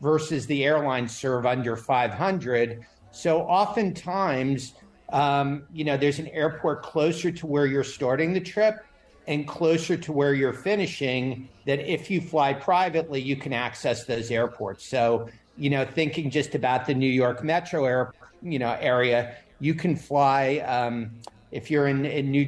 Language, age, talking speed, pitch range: English, 50-69, 160 wpm, 125-155 Hz